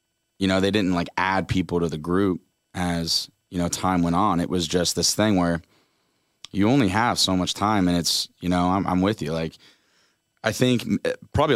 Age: 30-49